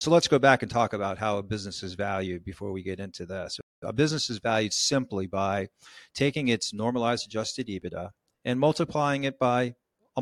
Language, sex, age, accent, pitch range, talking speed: English, male, 50-69, American, 105-130 Hz, 195 wpm